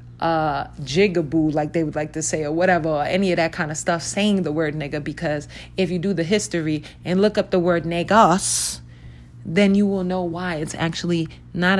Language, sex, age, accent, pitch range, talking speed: English, female, 30-49, American, 145-195 Hz, 210 wpm